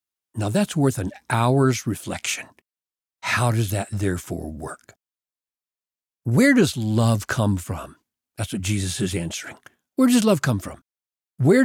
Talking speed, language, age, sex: 140 wpm, English, 60-79, male